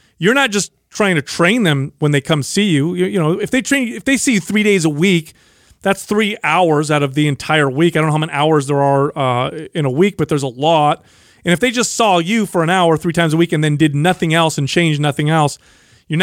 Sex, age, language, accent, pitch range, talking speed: male, 30-49, English, American, 145-180 Hz, 270 wpm